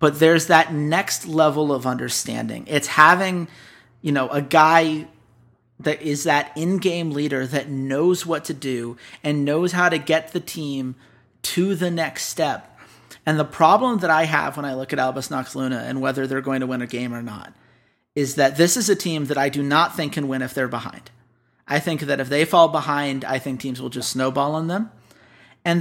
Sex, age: male, 40-59